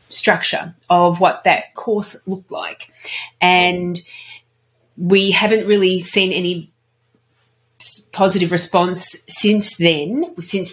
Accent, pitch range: Australian, 165-200 Hz